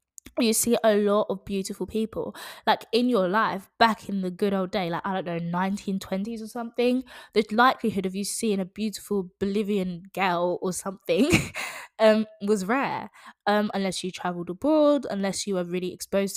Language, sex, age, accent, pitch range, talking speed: English, female, 20-39, British, 180-210 Hz, 175 wpm